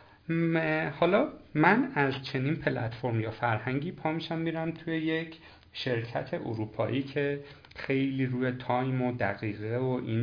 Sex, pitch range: male, 120-155 Hz